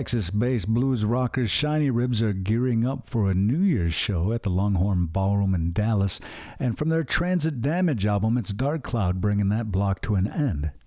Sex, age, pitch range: male, 50-69, 100-140 Hz